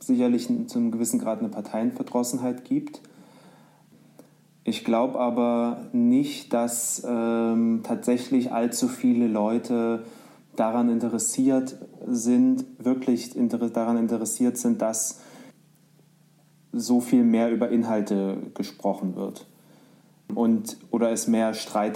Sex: male